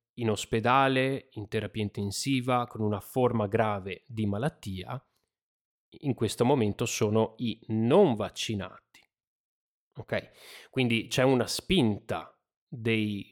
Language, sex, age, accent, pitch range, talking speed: Italian, male, 30-49, native, 105-130 Hz, 110 wpm